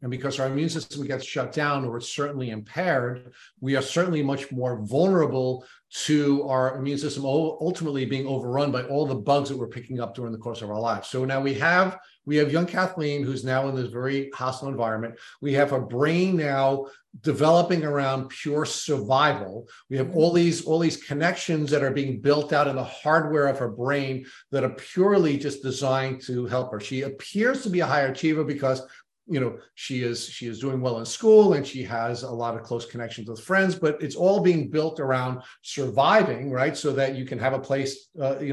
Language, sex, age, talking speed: English, male, 50-69, 210 wpm